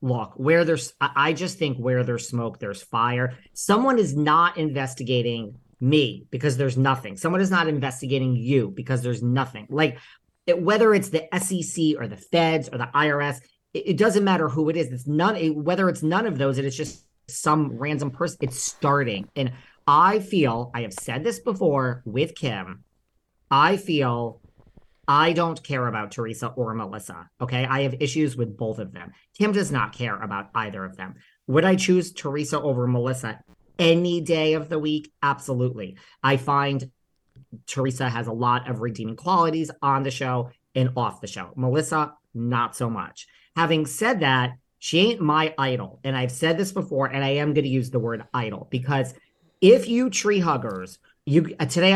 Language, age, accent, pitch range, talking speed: English, 40-59, American, 125-160 Hz, 180 wpm